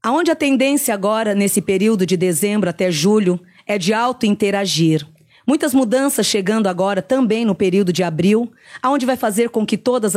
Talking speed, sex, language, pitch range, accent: 170 wpm, female, Portuguese, 190-235 Hz, Brazilian